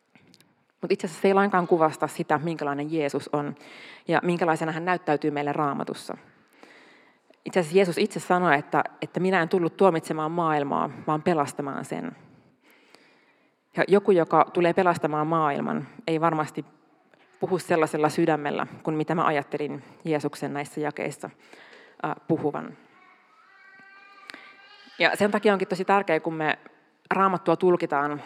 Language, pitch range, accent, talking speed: Finnish, 155-185 Hz, native, 130 wpm